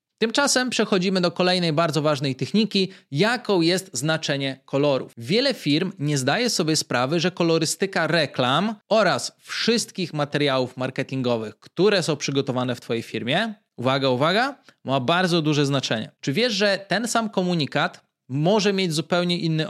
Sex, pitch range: male, 145-185 Hz